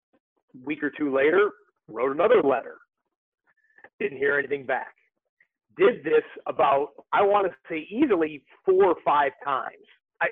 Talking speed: 140 wpm